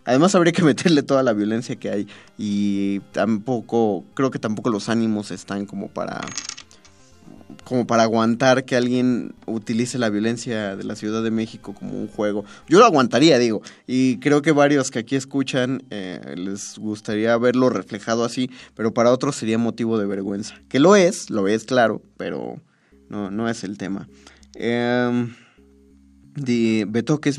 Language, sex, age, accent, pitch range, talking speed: Spanish, male, 20-39, Mexican, 105-130 Hz, 160 wpm